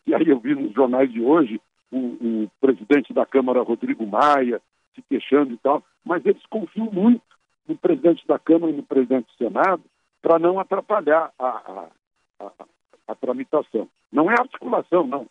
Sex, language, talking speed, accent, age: male, Portuguese, 165 wpm, Brazilian, 60-79